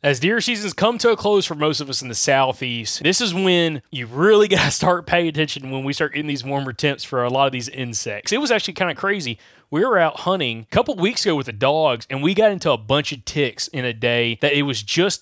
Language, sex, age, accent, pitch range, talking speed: English, male, 30-49, American, 135-190 Hz, 270 wpm